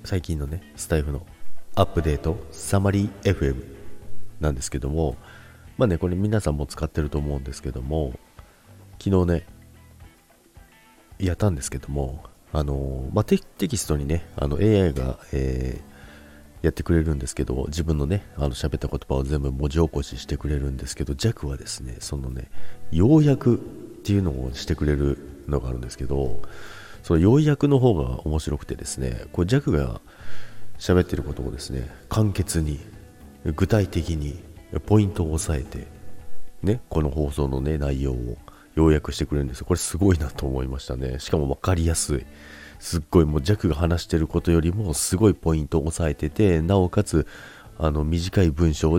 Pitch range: 70-90 Hz